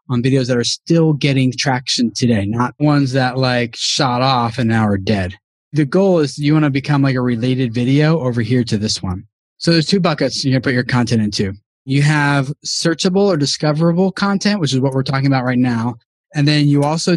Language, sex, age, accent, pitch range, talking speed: English, male, 20-39, American, 125-155 Hz, 215 wpm